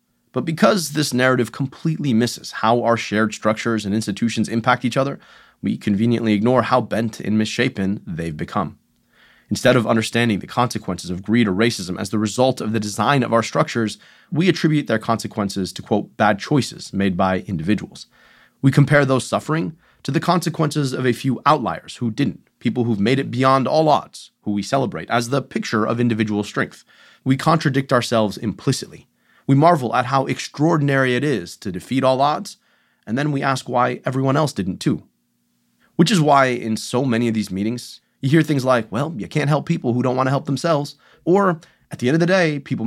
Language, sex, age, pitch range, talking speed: English, male, 30-49, 105-140 Hz, 195 wpm